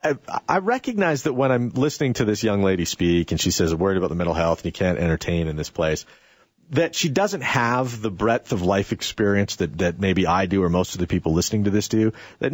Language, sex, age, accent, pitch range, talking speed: English, male, 40-59, American, 100-160 Hz, 260 wpm